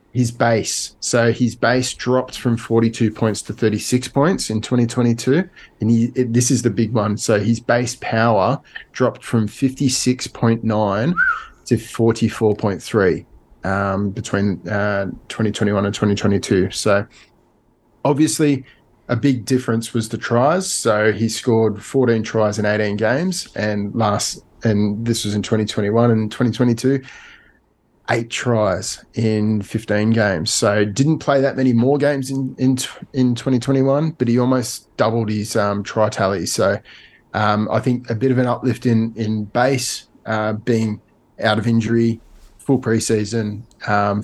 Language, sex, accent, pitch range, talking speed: English, male, Australian, 105-125 Hz, 140 wpm